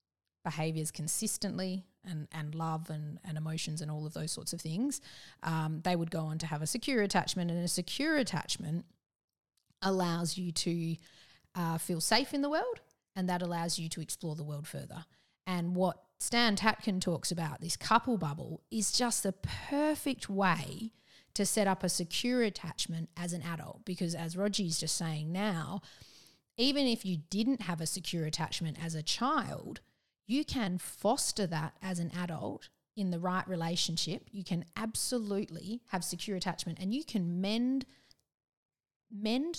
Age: 30-49